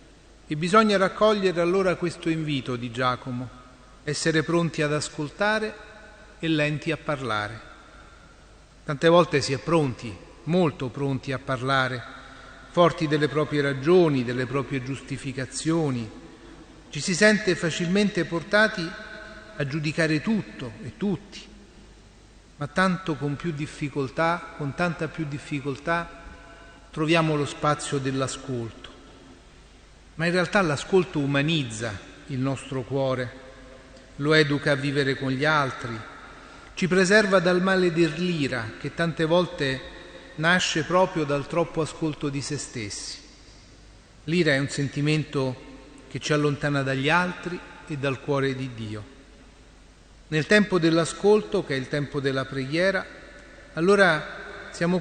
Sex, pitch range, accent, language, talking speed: male, 135-170 Hz, native, Italian, 120 wpm